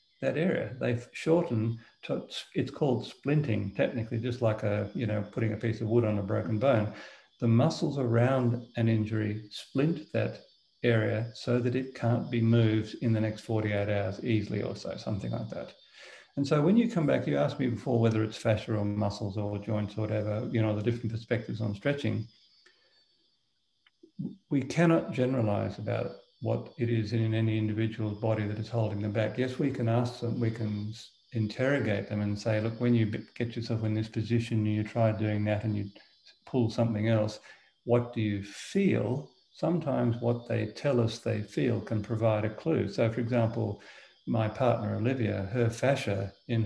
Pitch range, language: 105-120 Hz, English